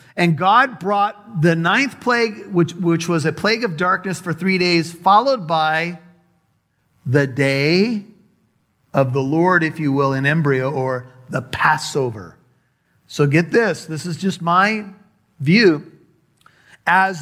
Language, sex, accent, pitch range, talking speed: English, male, American, 155-200 Hz, 140 wpm